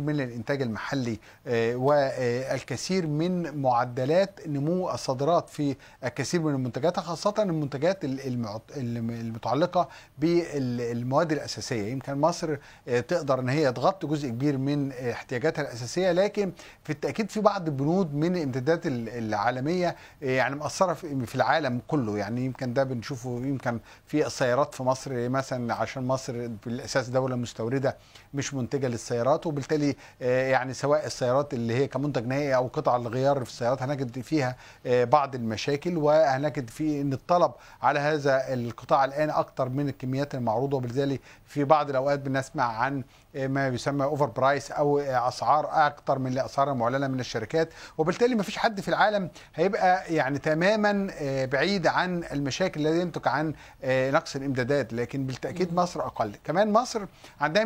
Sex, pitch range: male, 130-160 Hz